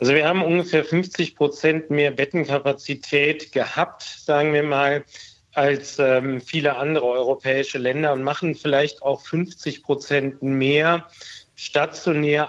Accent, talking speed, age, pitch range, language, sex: German, 125 wpm, 40-59, 135-155 Hz, German, male